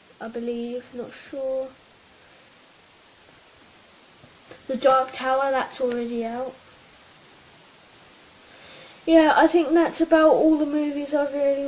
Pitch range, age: 240-280 Hz, 10-29